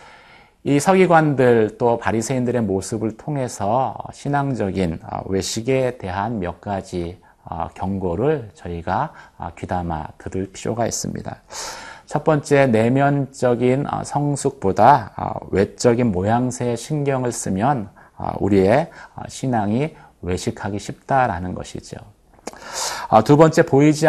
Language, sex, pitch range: Korean, male, 95-135 Hz